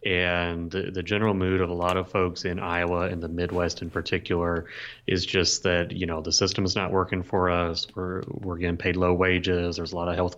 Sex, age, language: male, 30-49, English